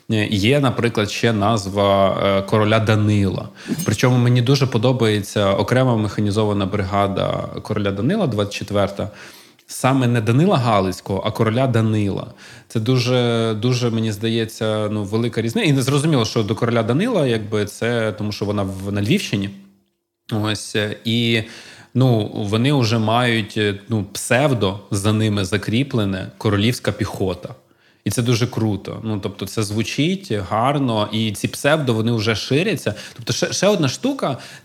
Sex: male